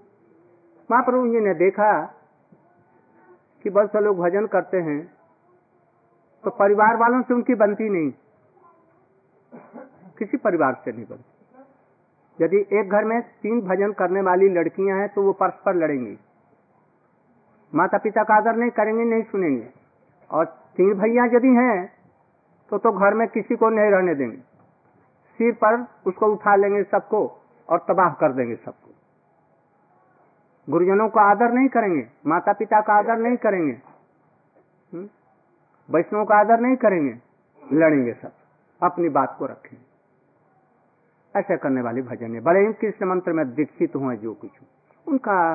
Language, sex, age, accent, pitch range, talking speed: Hindi, male, 50-69, native, 175-225 Hz, 140 wpm